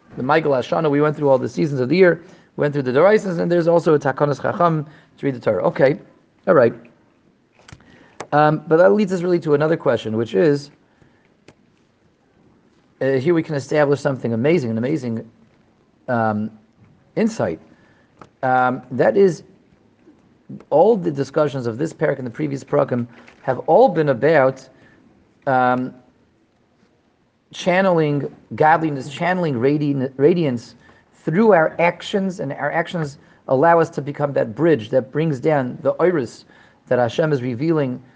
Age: 40-59